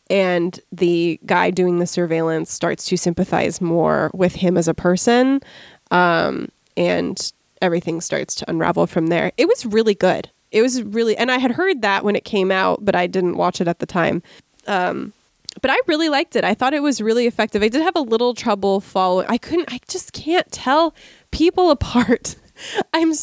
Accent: American